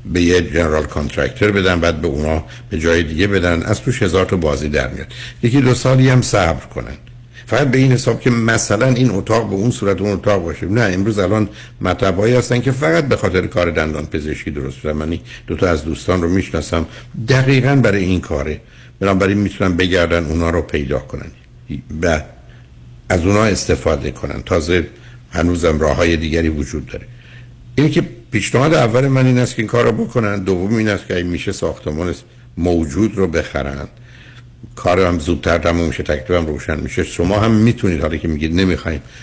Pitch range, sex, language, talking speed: 80-115 Hz, male, Persian, 180 wpm